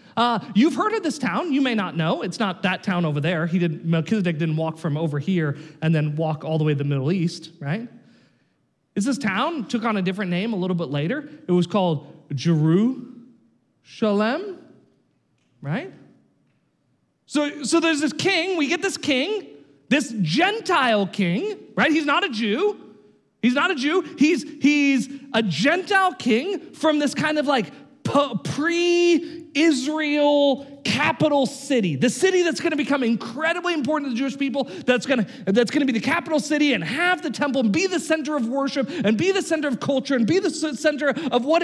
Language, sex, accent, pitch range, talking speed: English, male, American, 195-310 Hz, 185 wpm